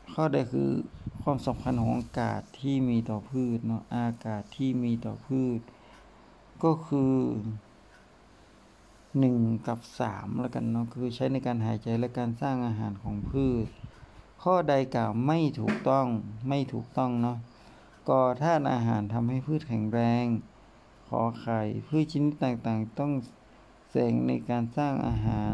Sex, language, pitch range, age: male, Thai, 110-130 Hz, 60-79